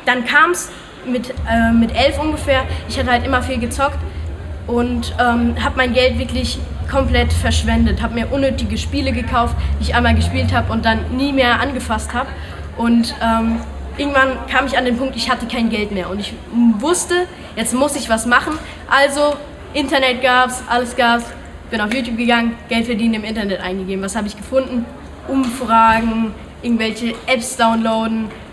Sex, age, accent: female, 10-29, German